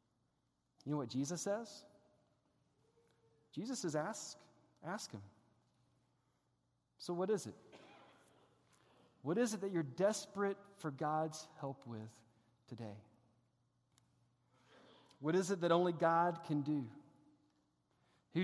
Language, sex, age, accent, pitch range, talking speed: English, male, 40-59, American, 135-200 Hz, 110 wpm